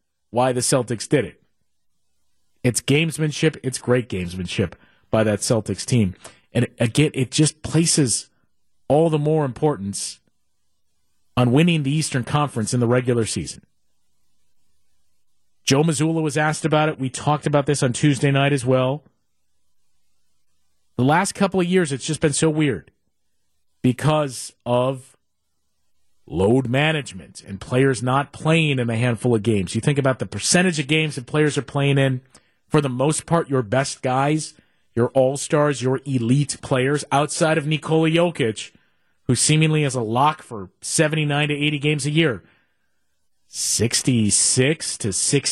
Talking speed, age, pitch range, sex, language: 145 wpm, 40-59, 105-150 Hz, male, English